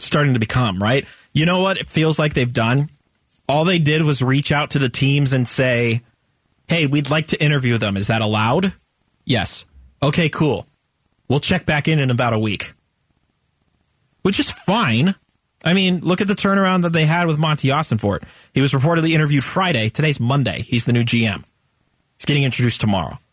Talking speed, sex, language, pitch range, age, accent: 195 wpm, male, English, 120-160 Hz, 30-49, American